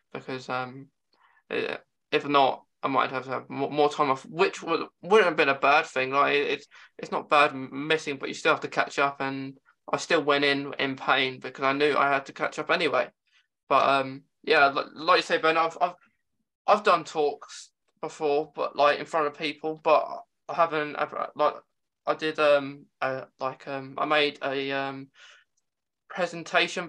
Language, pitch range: English, 135-155 Hz